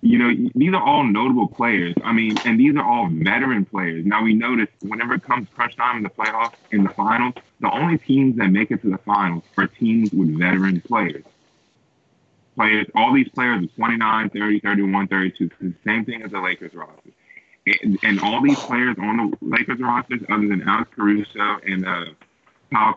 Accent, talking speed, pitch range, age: American, 195 wpm, 90-110 Hz, 20-39